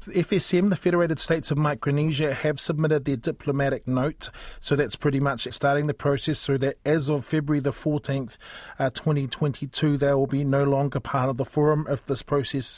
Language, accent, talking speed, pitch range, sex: English, Australian, 185 wpm, 130-145 Hz, male